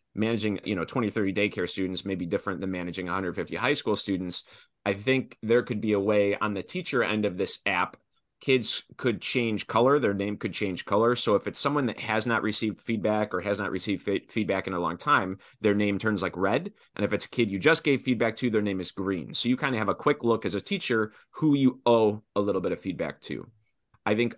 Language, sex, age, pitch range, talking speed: English, male, 30-49, 95-115 Hz, 240 wpm